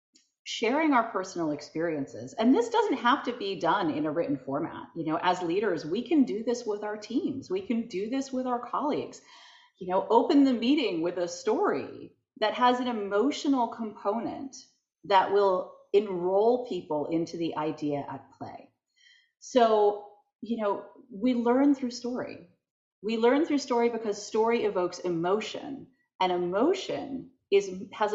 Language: English